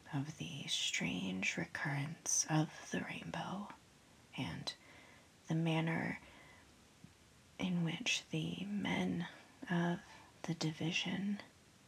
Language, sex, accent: English, female, American